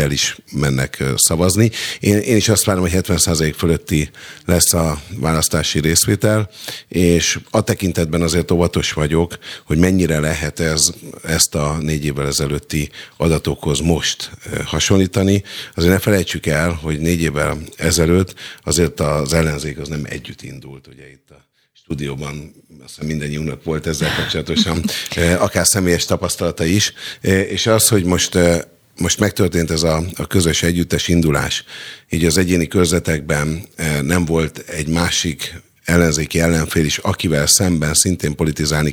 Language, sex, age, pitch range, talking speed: Hungarian, male, 50-69, 80-90 Hz, 135 wpm